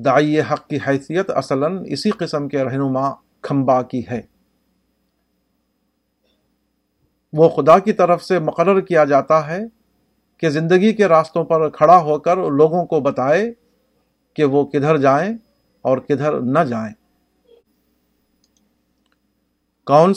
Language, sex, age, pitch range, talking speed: Urdu, male, 50-69, 130-160 Hz, 120 wpm